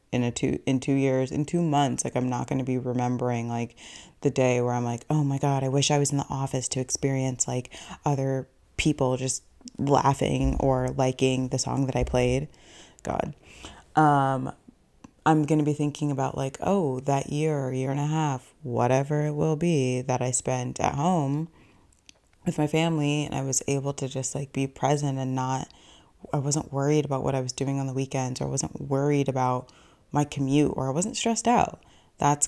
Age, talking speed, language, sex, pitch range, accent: 20-39, 200 wpm, English, female, 130-145 Hz, American